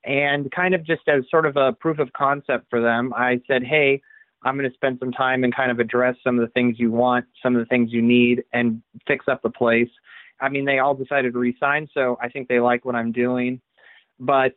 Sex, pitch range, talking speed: male, 120-145 Hz, 245 wpm